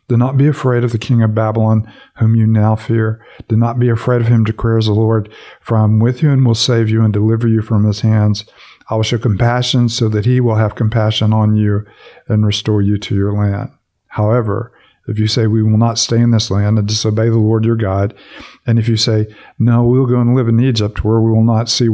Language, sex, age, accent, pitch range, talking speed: English, male, 50-69, American, 110-120 Hz, 245 wpm